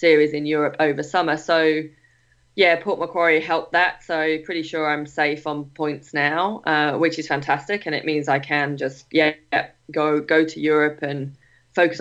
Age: 20-39